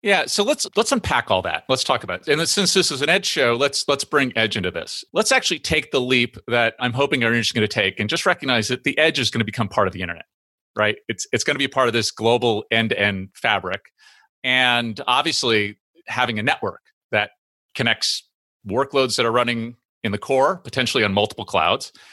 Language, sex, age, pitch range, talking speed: English, male, 30-49, 105-135 Hz, 225 wpm